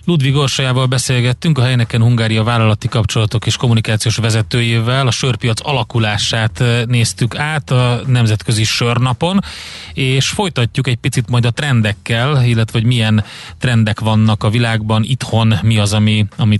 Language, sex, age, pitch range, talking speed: Hungarian, male, 30-49, 105-125 Hz, 135 wpm